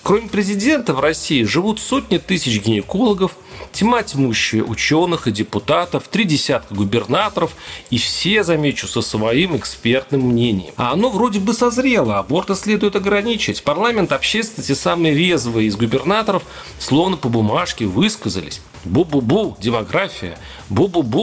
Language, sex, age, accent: Russian, male, 40-59, native